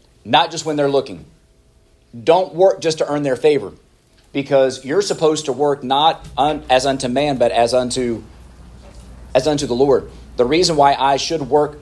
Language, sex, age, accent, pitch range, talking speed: English, male, 40-59, American, 115-145 Hz, 175 wpm